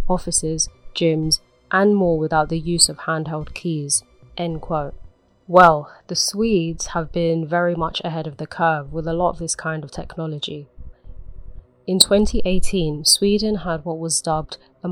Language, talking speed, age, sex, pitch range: English, 155 wpm, 20-39, female, 155-180 Hz